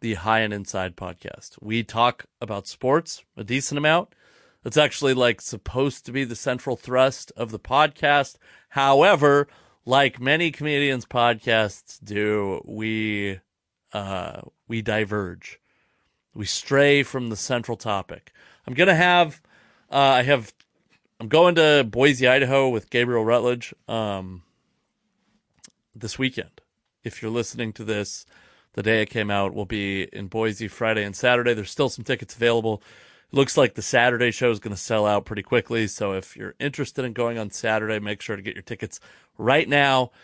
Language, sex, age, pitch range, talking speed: English, male, 30-49, 110-140 Hz, 160 wpm